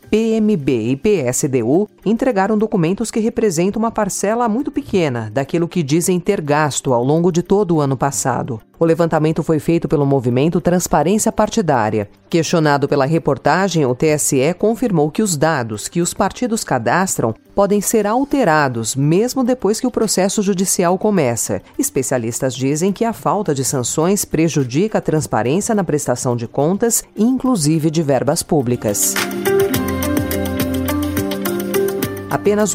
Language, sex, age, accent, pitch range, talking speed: Portuguese, female, 40-59, Brazilian, 140-200 Hz, 135 wpm